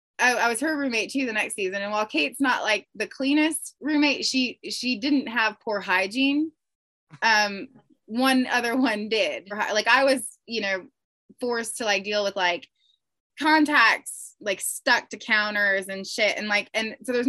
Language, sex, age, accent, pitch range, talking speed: English, female, 20-39, American, 195-275 Hz, 175 wpm